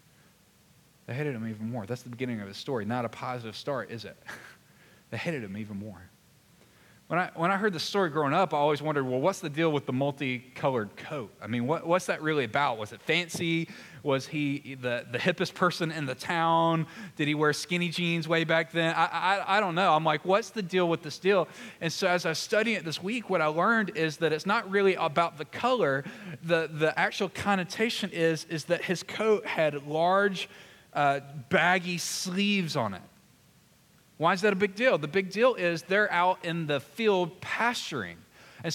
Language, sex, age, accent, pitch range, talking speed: English, male, 20-39, American, 145-195 Hz, 210 wpm